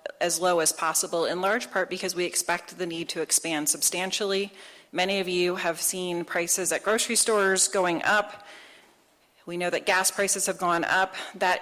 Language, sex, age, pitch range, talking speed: English, female, 30-49, 170-195 Hz, 180 wpm